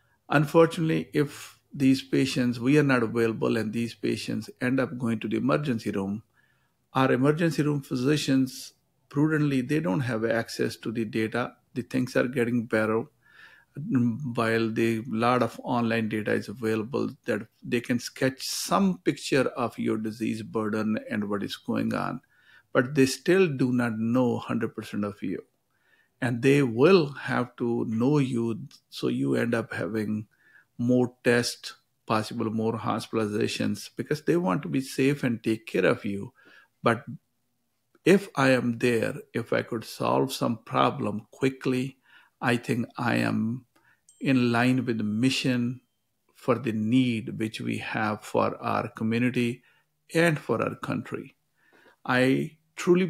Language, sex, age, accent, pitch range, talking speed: English, male, 50-69, Indian, 115-130 Hz, 150 wpm